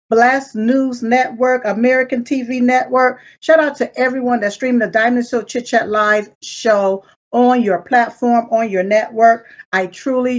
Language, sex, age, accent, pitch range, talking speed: English, female, 50-69, American, 215-250 Hz, 160 wpm